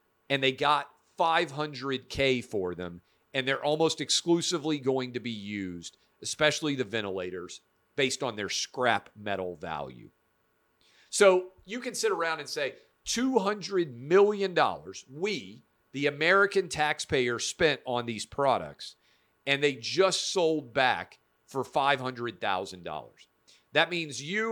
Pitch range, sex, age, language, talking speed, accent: 120-170 Hz, male, 40-59, English, 130 wpm, American